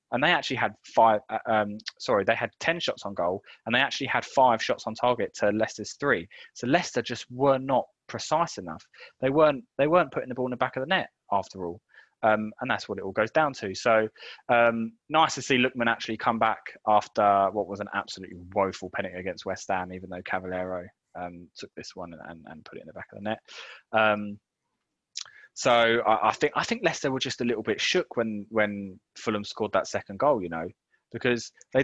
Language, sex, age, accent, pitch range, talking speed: English, male, 20-39, British, 110-175 Hz, 215 wpm